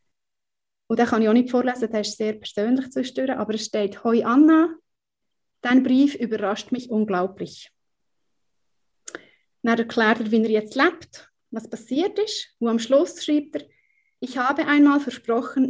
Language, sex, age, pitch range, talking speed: German, female, 30-49, 225-280 Hz, 160 wpm